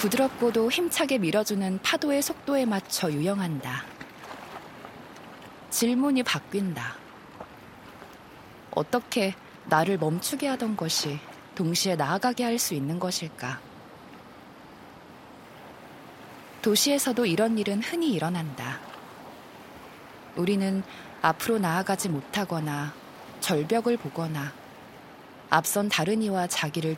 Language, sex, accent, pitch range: Korean, female, native, 160-235 Hz